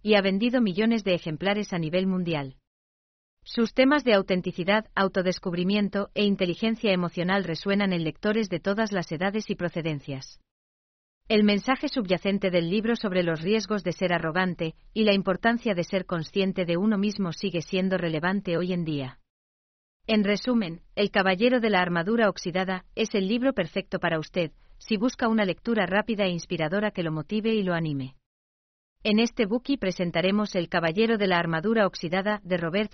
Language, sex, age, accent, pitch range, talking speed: English, female, 40-59, Spanish, 170-210 Hz, 165 wpm